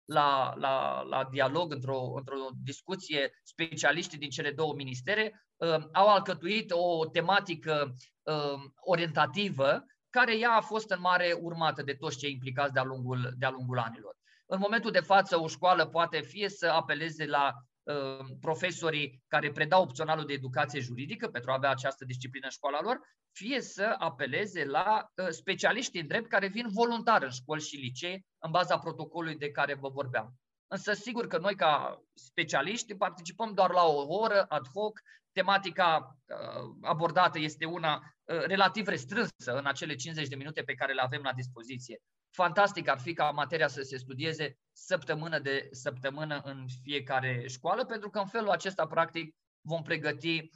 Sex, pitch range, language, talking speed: male, 140-185 Hz, Romanian, 160 wpm